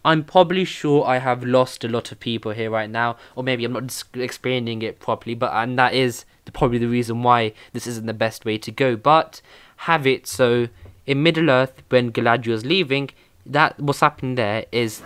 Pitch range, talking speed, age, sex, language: 110-135 Hz, 205 wpm, 20-39, male, English